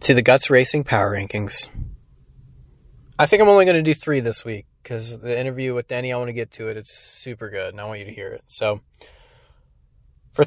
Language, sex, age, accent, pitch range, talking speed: English, male, 20-39, American, 120-160 Hz, 225 wpm